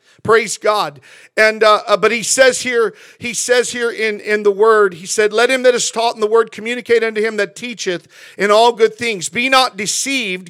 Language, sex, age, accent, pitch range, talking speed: English, male, 50-69, American, 210-245 Hz, 210 wpm